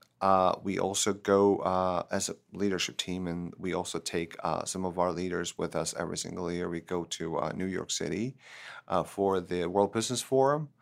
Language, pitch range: English, 90-105 Hz